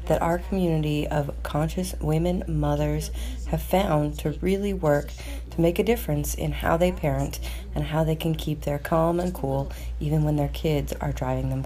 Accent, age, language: American, 30-49, English